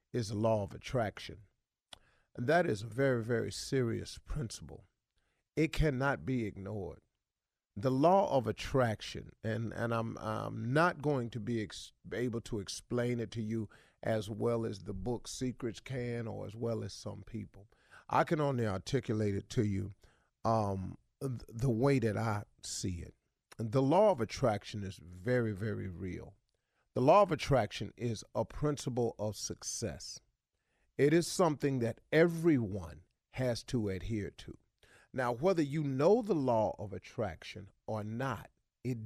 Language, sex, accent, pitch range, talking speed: English, male, American, 105-135 Hz, 150 wpm